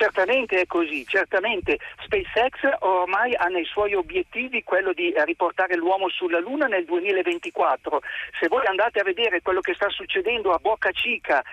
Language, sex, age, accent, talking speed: Italian, male, 50-69, native, 155 wpm